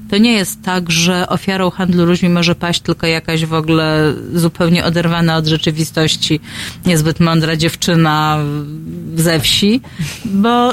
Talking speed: 135 wpm